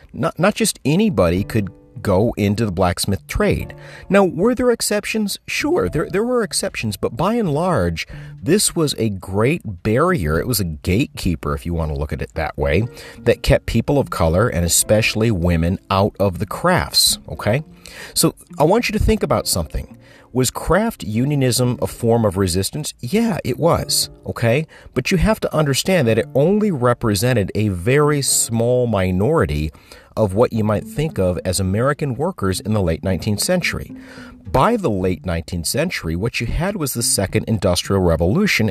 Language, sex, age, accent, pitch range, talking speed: English, male, 50-69, American, 90-145 Hz, 175 wpm